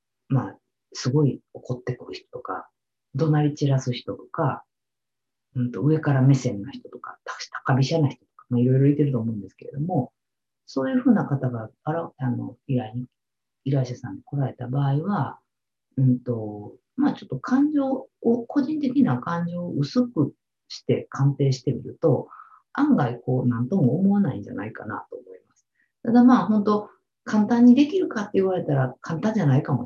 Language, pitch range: Japanese, 125-195 Hz